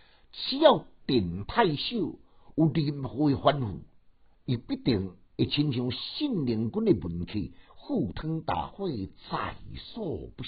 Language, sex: Chinese, male